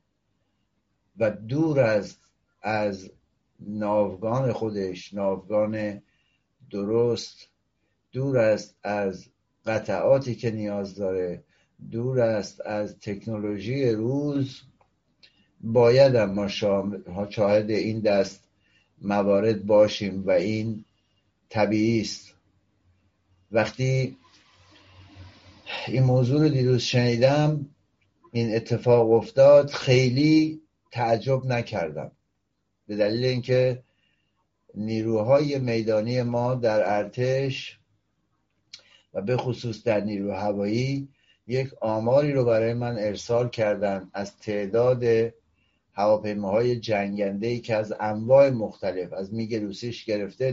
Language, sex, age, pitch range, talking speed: Persian, male, 60-79, 100-125 Hz, 95 wpm